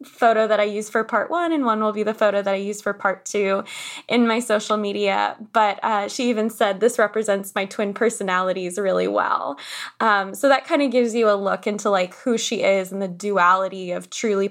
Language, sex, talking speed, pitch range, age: English, female, 225 wpm, 200-245 Hz, 20-39